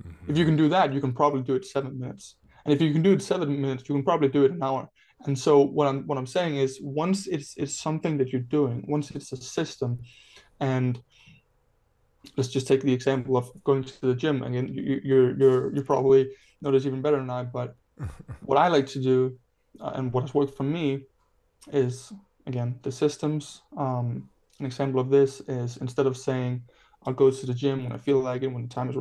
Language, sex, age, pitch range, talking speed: English, male, 20-39, 130-145 Hz, 225 wpm